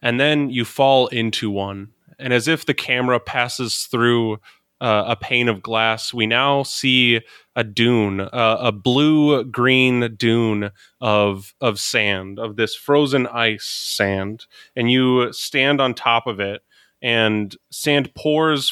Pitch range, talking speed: 110-125 Hz, 145 wpm